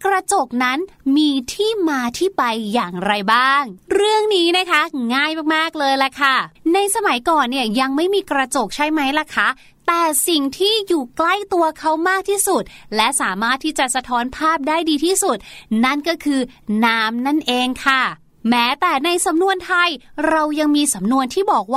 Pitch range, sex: 255-330 Hz, female